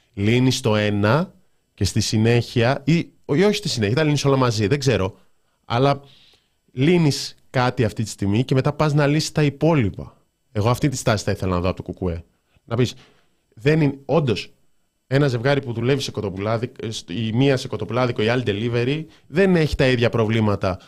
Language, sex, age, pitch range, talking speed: Greek, male, 20-39, 105-145 Hz, 180 wpm